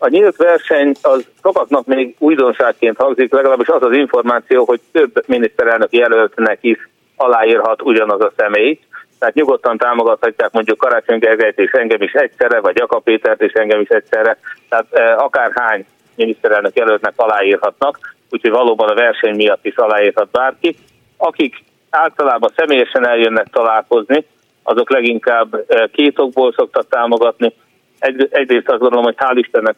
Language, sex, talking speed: Hungarian, male, 135 wpm